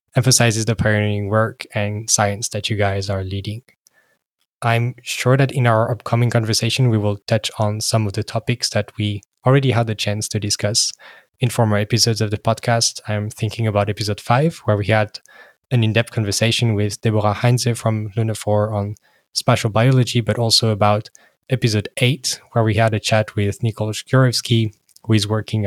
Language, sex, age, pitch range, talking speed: English, male, 10-29, 105-120 Hz, 175 wpm